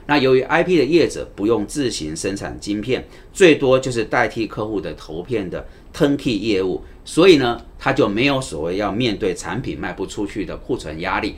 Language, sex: Chinese, male